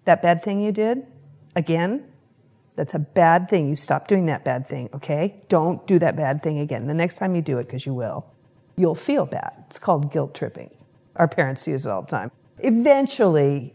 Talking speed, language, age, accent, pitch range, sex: 205 wpm, English, 50-69, American, 160-200 Hz, female